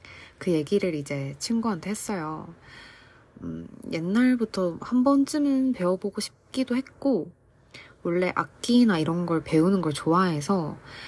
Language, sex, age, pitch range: Korean, female, 20-39, 145-185 Hz